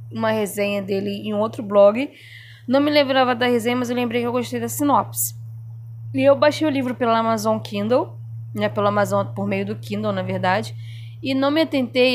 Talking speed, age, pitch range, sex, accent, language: 200 wpm, 10-29, 195-250 Hz, female, Brazilian, Portuguese